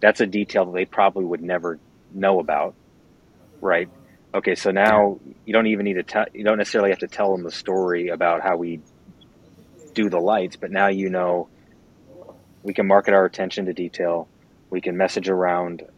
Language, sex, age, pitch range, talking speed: English, male, 30-49, 90-100 Hz, 190 wpm